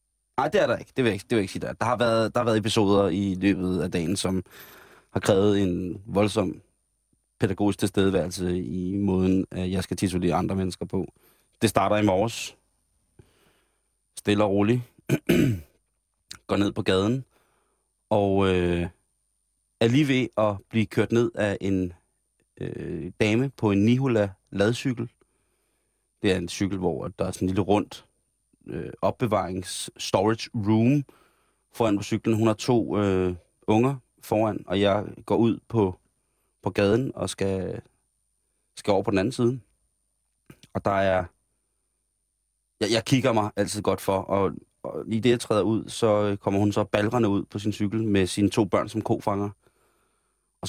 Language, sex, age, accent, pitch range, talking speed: Danish, male, 30-49, native, 95-115 Hz, 155 wpm